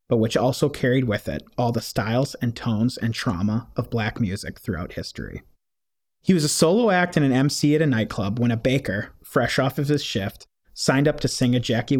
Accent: American